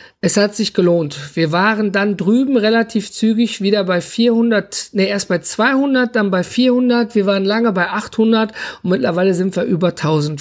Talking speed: 180 wpm